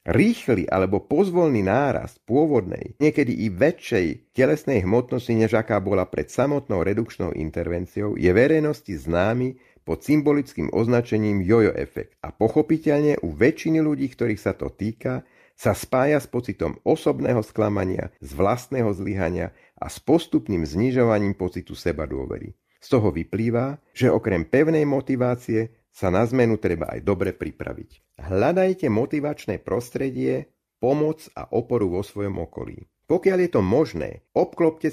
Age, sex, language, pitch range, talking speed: 50-69, male, Slovak, 105-145 Hz, 130 wpm